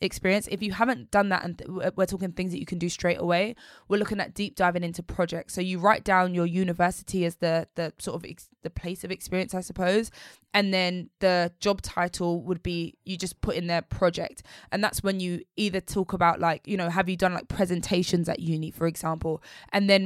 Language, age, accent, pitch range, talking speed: English, 20-39, British, 175-195 Hz, 220 wpm